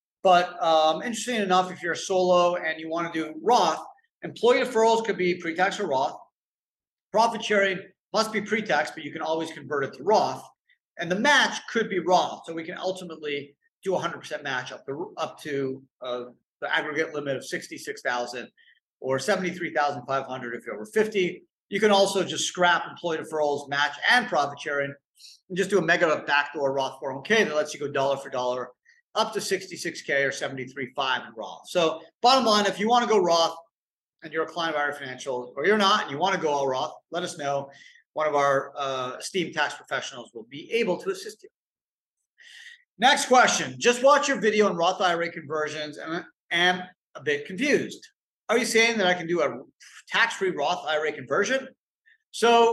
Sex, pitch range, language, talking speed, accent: male, 150-215 Hz, English, 190 wpm, American